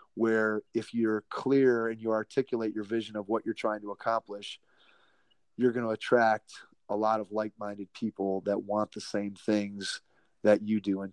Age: 30-49